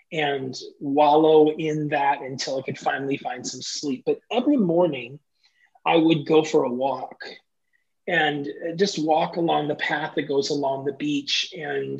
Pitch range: 145-200 Hz